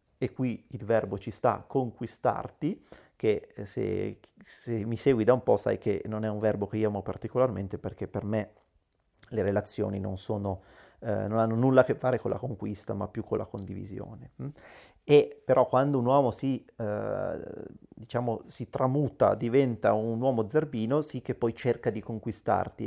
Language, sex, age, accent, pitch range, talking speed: Italian, male, 30-49, native, 110-135 Hz, 175 wpm